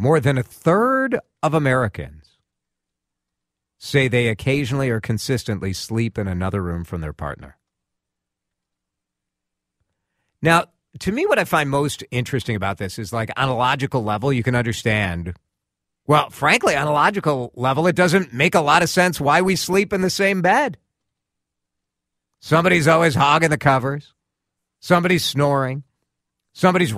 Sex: male